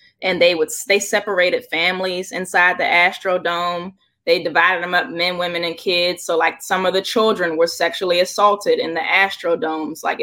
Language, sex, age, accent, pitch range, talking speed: English, female, 20-39, American, 175-255 Hz, 175 wpm